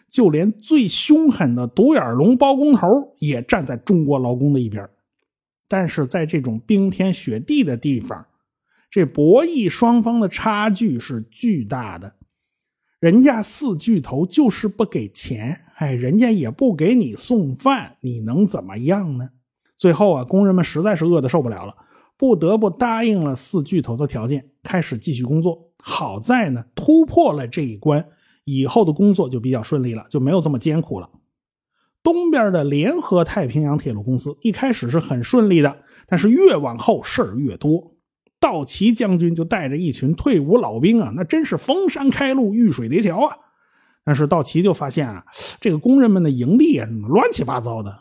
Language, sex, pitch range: Chinese, male, 140-225 Hz